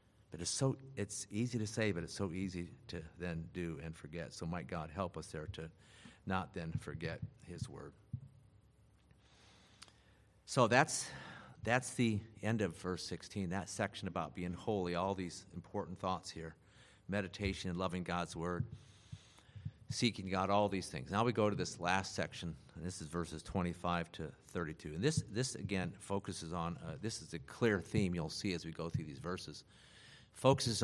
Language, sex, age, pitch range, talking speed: English, male, 50-69, 90-115 Hz, 175 wpm